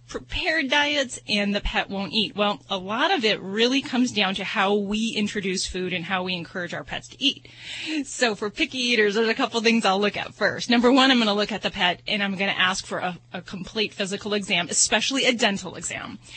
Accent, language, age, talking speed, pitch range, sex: American, English, 30-49, 235 wpm, 185-245 Hz, female